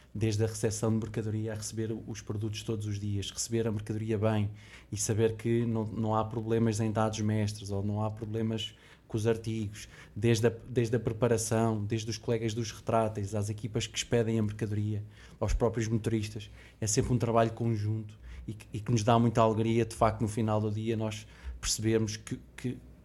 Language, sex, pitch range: Portuguese, male, 110-120 Hz